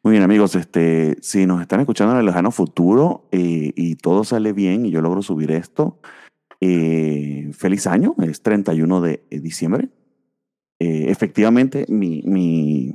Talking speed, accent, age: 155 wpm, Venezuelan, 30-49